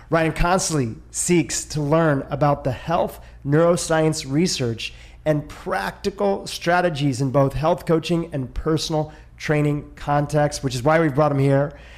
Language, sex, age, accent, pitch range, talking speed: English, male, 30-49, American, 135-165 Hz, 140 wpm